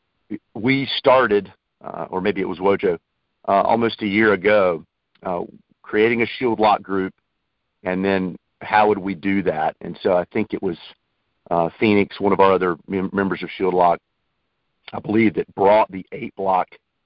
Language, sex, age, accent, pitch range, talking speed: English, male, 50-69, American, 95-105 Hz, 170 wpm